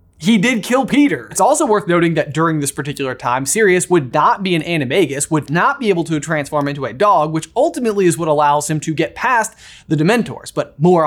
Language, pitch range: English, 155-215 Hz